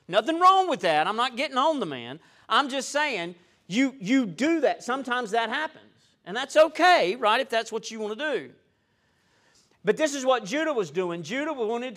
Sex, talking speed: male, 200 wpm